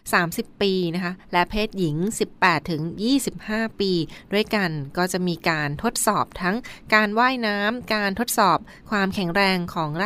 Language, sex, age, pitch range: Thai, female, 20-39, 170-210 Hz